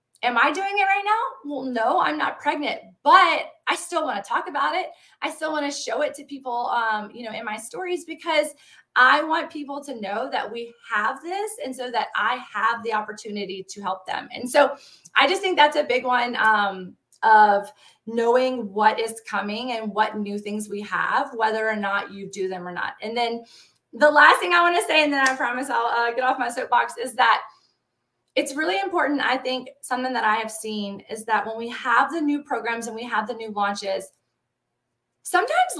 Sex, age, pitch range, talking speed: female, 20-39, 215-290 Hz, 215 wpm